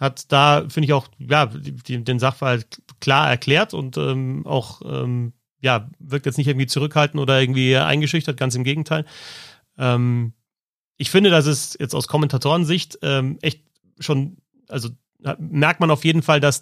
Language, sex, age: German, male, 30-49